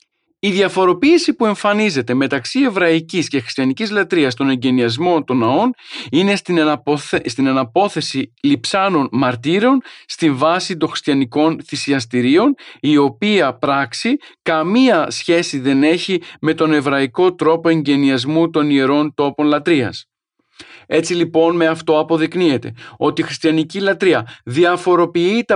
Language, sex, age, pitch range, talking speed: Greek, male, 40-59, 145-190 Hz, 120 wpm